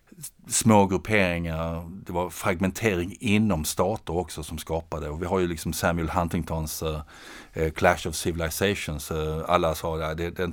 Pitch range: 80-90 Hz